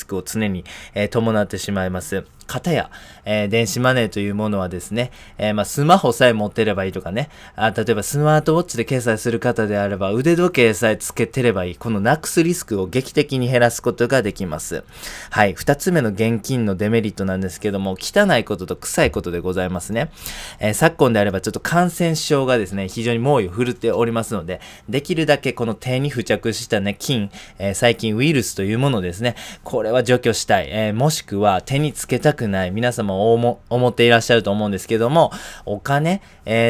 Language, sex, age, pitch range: Japanese, male, 20-39, 100-130 Hz